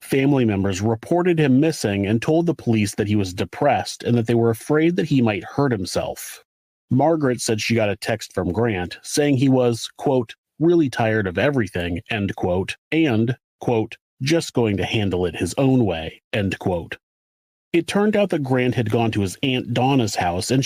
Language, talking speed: English, 190 wpm